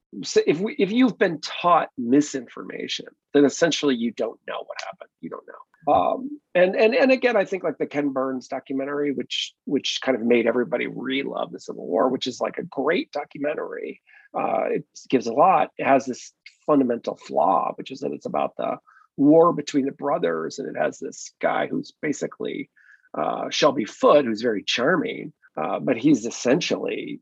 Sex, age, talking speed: male, 40-59, 185 wpm